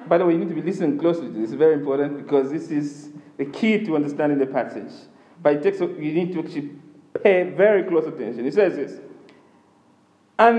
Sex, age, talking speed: male, 50-69, 215 wpm